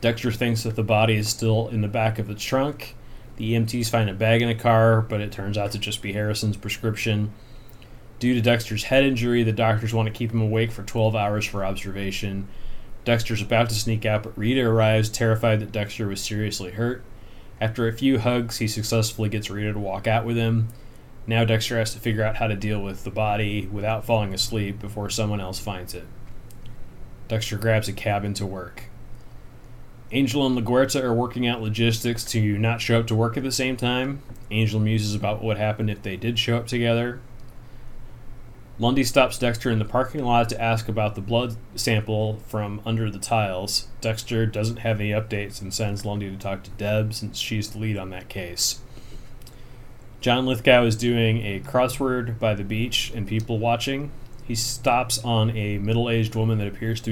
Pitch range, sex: 105-120 Hz, male